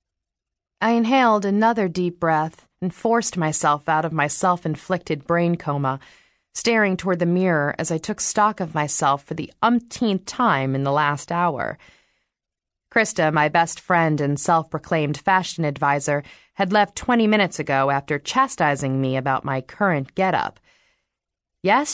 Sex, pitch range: female, 155-225 Hz